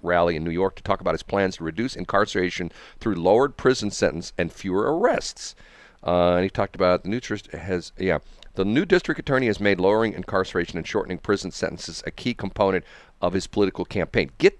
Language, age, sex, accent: English, 50-69, male, American